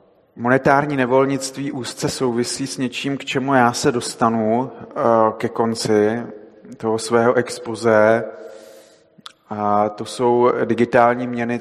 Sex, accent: male, native